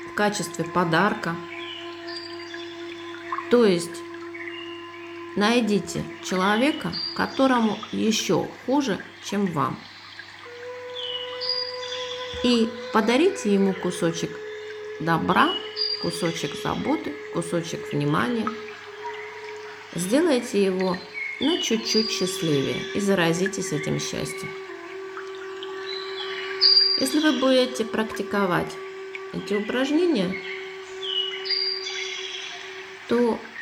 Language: Russian